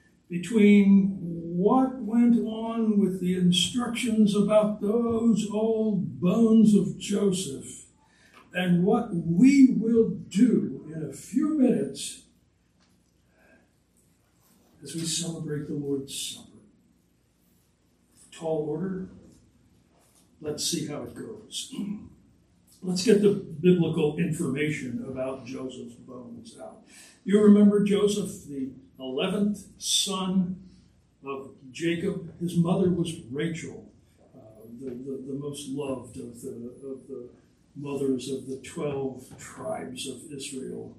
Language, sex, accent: English, male, American